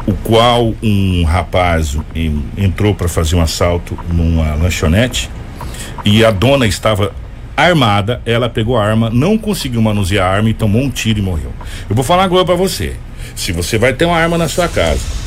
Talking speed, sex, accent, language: 180 wpm, male, Brazilian, Portuguese